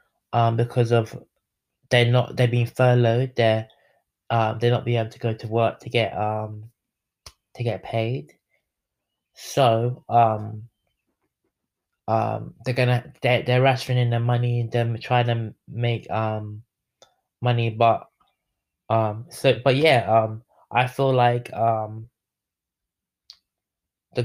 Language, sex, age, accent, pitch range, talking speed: English, male, 20-39, British, 110-125 Hz, 130 wpm